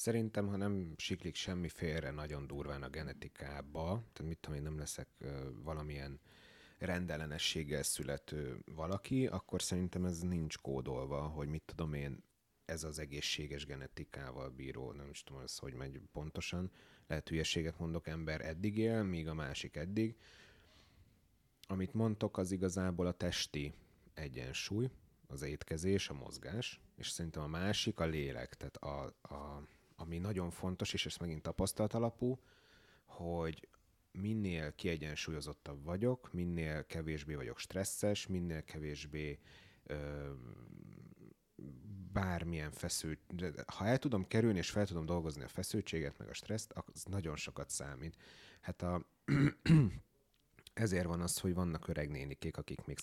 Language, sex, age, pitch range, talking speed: Hungarian, male, 30-49, 75-95 Hz, 135 wpm